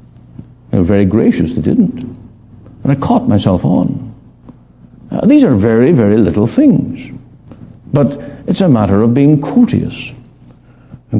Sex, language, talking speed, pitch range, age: male, English, 125 wpm, 105-140 Hz, 60-79